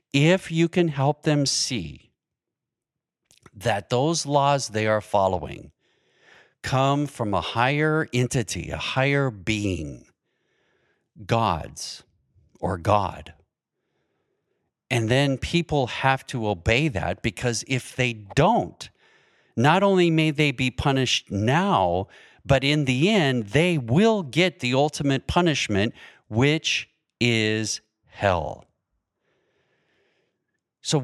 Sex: male